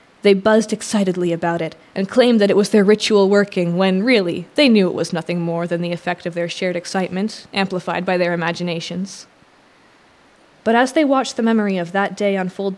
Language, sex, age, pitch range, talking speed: English, female, 20-39, 175-210 Hz, 195 wpm